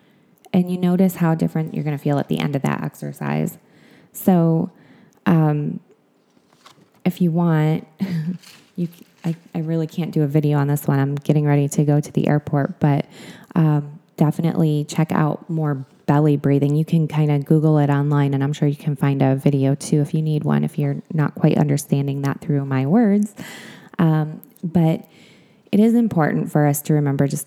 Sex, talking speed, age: female, 190 wpm, 20-39